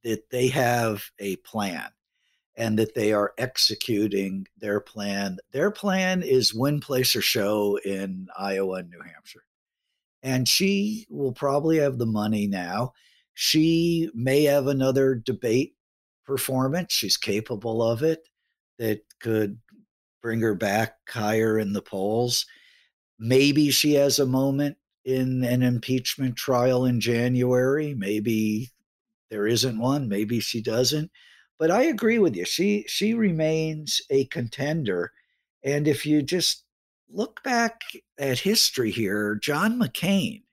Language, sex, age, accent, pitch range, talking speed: English, male, 50-69, American, 115-155 Hz, 135 wpm